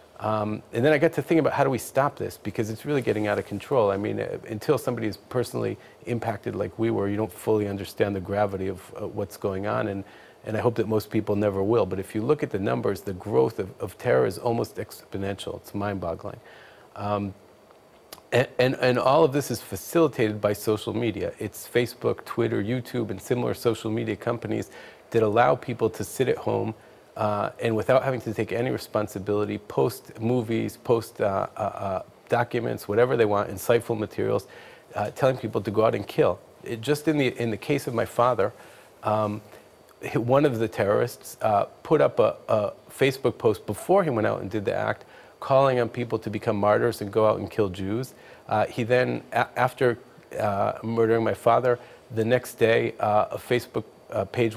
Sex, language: male, English